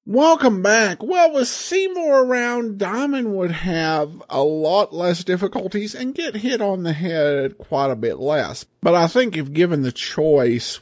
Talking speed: 165 wpm